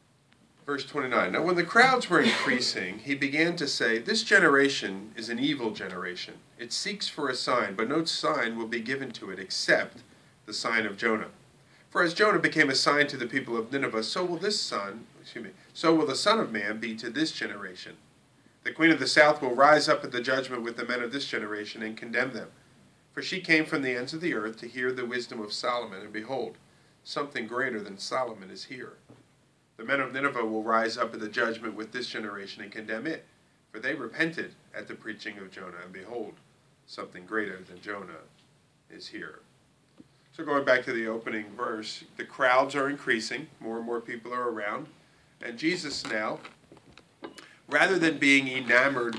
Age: 40-59